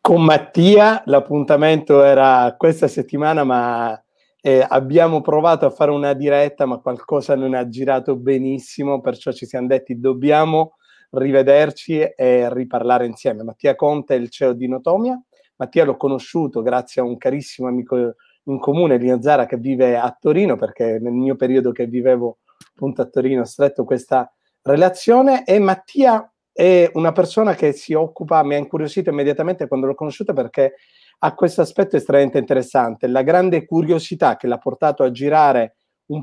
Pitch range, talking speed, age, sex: 130-165 Hz, 155 wpm, 30-49, male